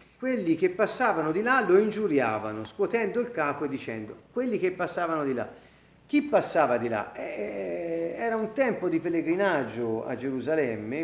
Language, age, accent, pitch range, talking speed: Italian, 40-59, native, 130-195 Hz, 160 wpm